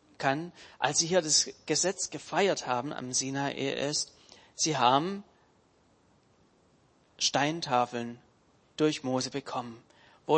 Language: German